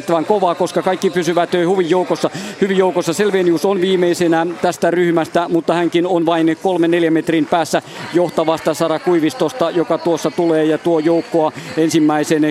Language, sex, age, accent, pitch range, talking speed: Finnish, male, 50-69, native, 160-180 Hz, 140 wpm